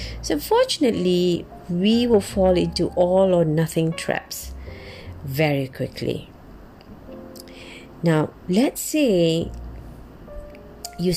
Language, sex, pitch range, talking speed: English, female, 150-200 Hz, 85 wpm